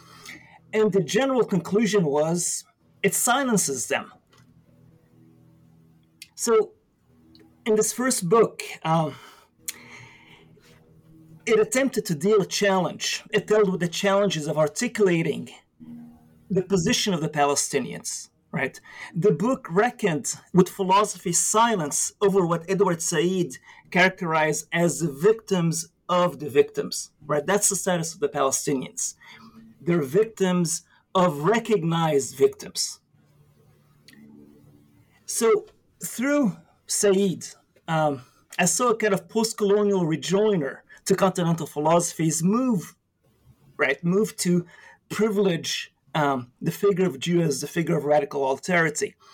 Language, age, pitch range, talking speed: English, 40-59, 155-210 Hz, 115 wpm